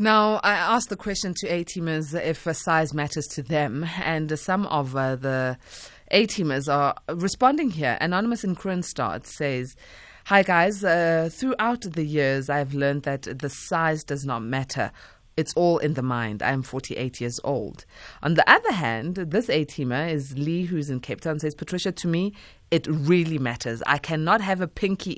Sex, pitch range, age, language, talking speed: female, 145-195 Hz, 20-39, English, 180 wpm